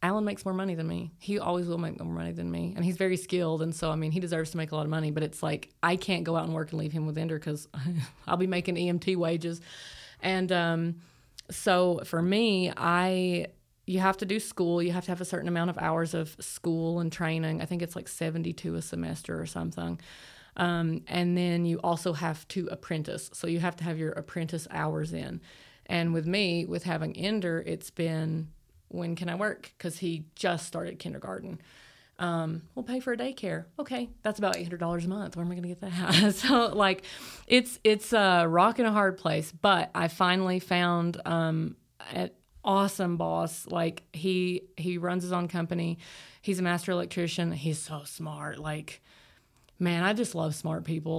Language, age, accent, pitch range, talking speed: English, 30-49, American, 160-185 Hz, 205 wpm